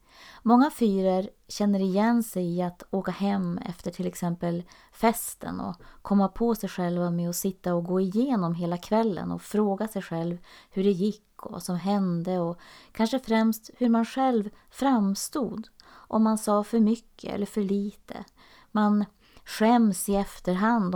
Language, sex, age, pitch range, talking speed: Swedish, female, 30-49, 180-230 Hz, 160 wpm